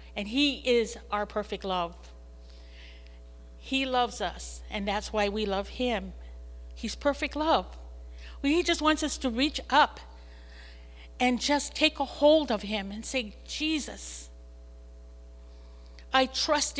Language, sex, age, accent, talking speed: English, female, 50-69, American, 130 wpm